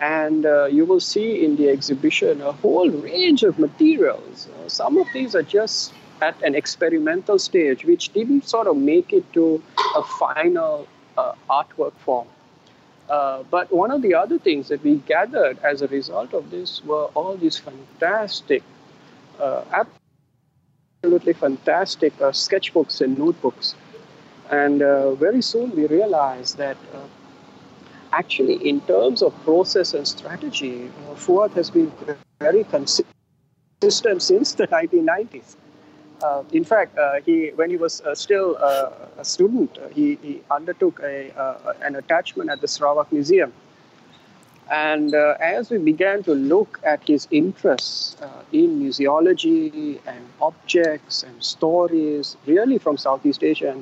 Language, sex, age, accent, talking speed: English, male, 50-69, Indian, 145 wpm